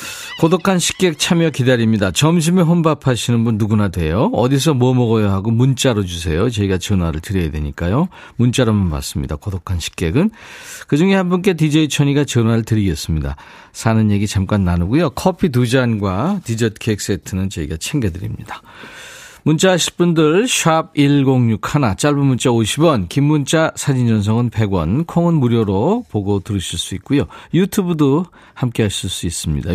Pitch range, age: 100-155 Hz, 40-59